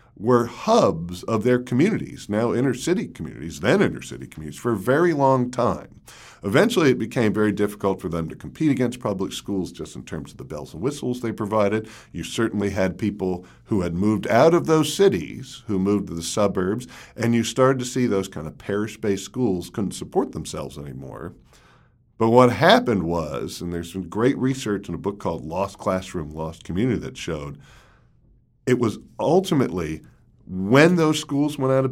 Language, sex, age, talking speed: English, male, 50-69, 185 wpm